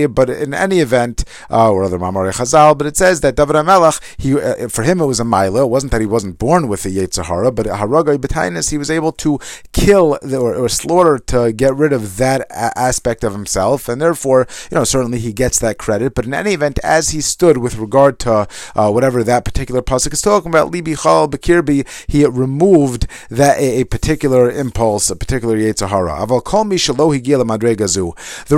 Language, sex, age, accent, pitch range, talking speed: English, male, 30-49, American, 110-145 Hz, 200 wpm